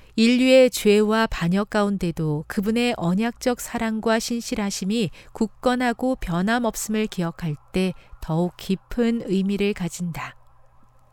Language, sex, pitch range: Korean, female, 175-235 Hz